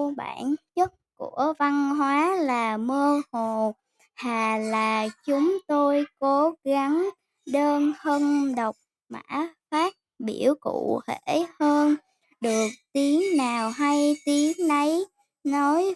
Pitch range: 235-320 Hz